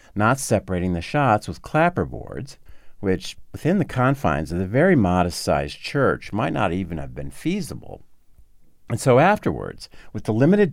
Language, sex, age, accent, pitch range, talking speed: English, male, 50-69, American, 90-130 Hz, 160 wpm